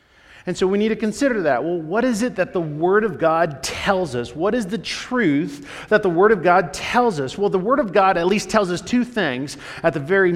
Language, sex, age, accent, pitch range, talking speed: English, male, 40-59, American, 150-215 Hz, 250 wpm